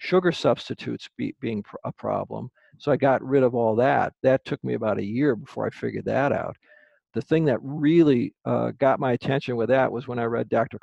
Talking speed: 210 wpm